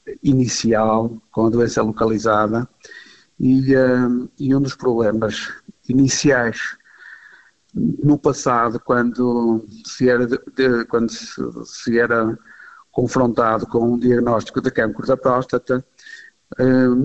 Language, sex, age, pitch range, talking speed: Portuguese, male, 50-69, 120-135 Hz, 115 wpm